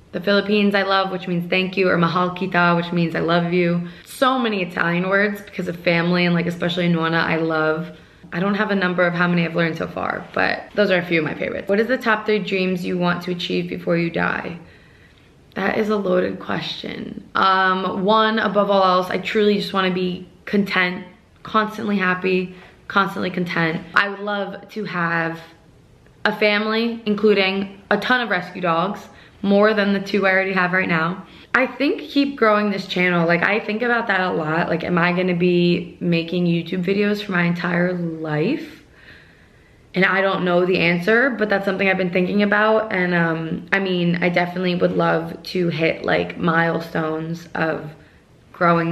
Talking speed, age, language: 195 wpm, 20-39, English